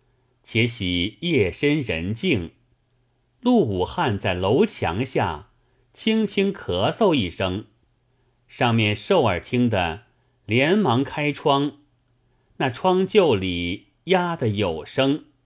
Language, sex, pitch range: Chinese, male, 105-135 Hz